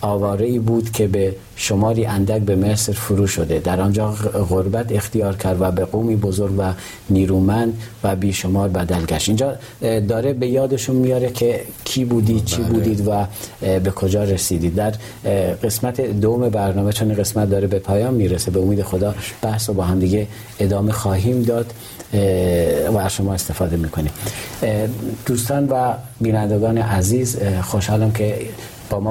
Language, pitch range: Persian, 95-110 Hz